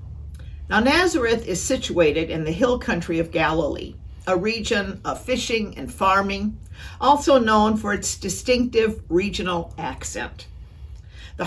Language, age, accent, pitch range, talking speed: English, 50-69, American, 160-250 Hz, 125 wpm